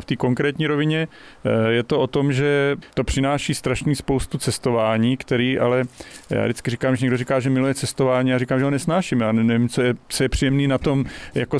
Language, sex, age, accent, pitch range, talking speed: Czech, male, 40-59, native, 120-135 Hz, 200 wpm